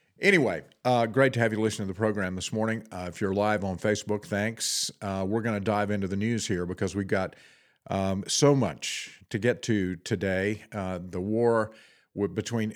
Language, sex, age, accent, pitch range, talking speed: English, male, 50-69, American, 95-115 Hz, 200 wpm